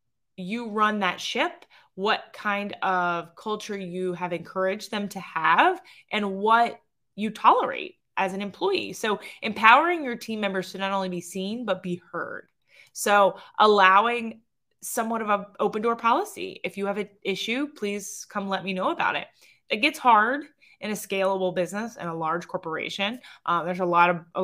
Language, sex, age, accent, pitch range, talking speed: English, female, 20-39, American, 180-220 Hz, 175 wpm